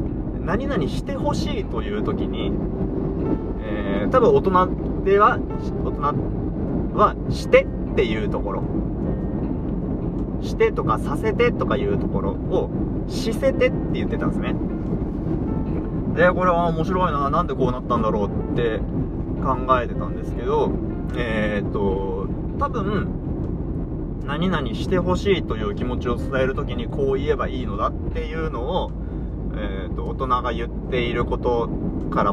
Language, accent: Japanese, native